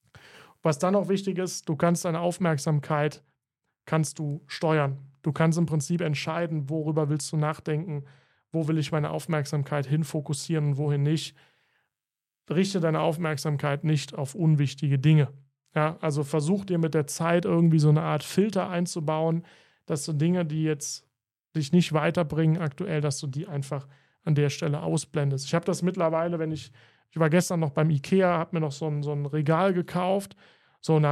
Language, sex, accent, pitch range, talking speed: German, male, German, 150-170 Hz, 170 wpm